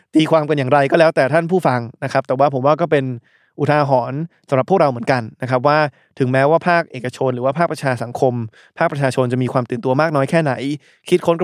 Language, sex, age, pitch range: Thai, male, 20-39, 130-165 Hz